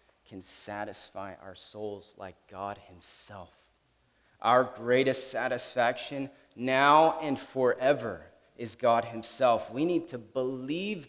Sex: male